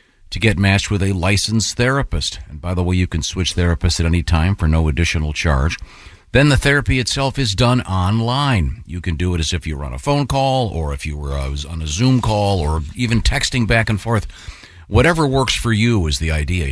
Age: 50-69